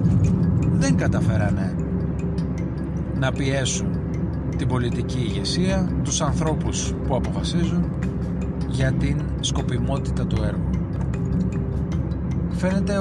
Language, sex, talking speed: Greek, male, 75 wpm